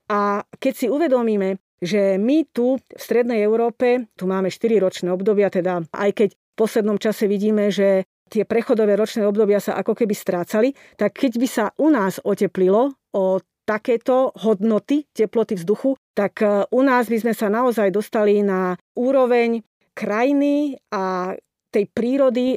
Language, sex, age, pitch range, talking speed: Slovak, female, 40-59, 200-245 Hz, 150 wpm